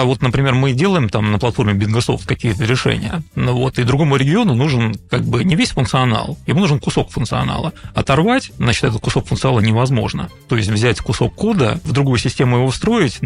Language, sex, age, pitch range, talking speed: Russian, male, 30-49, 110-150 Hz, 195 wpm